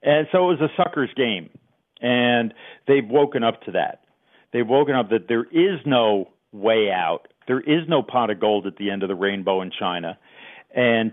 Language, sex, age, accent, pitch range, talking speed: English, male, 50-69, American, 110-140 Hz, 200 wpm